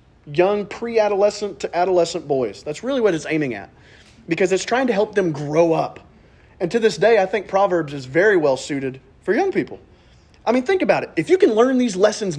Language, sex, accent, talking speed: English, male, American, 215 wpm